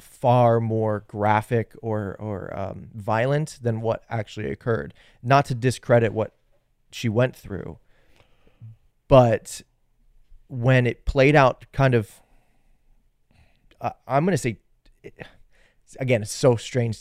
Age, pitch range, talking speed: 30-49, 105-125 Hz, 120 wpm